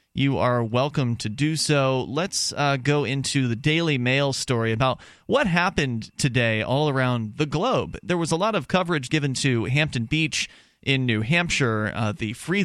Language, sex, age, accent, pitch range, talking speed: English, male, 30-49, American, 115-155 Hz, 180 wpm